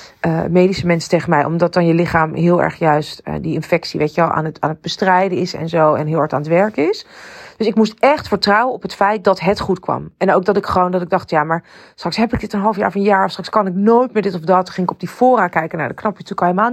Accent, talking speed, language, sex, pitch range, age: Dutch, 315 wpm, Dutch, female, 165-220 Hz, 40-59